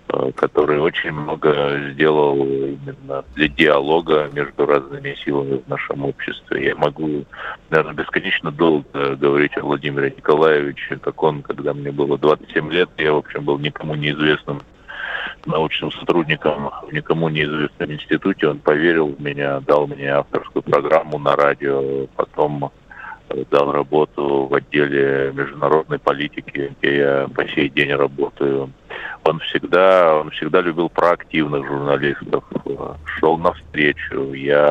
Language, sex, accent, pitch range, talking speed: Russian, male, native, 70-75 Hz, 130 wpm